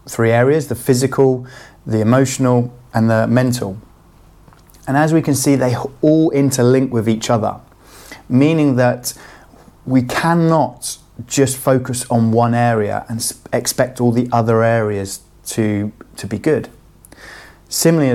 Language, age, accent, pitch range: English, 30-49, British, 115-135 Hz